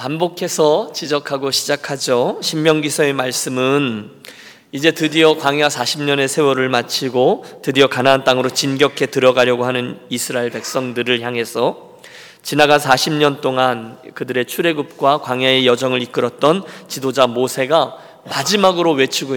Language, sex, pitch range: Korean, male, 130-180 Hz